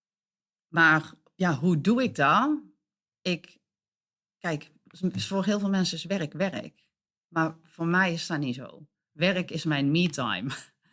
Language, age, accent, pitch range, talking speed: Dutch, 40-59, Dutch, 165-210 Hz, 145 wpm